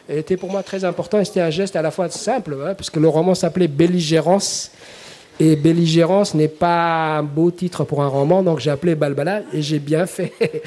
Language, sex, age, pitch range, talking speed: French, male, 50-69, 140-175 Hz, 215 wpm